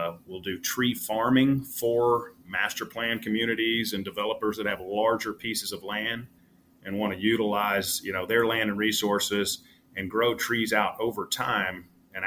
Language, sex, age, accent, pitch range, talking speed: English, male, 30-49, American, 95-110 Hz, 160 wpm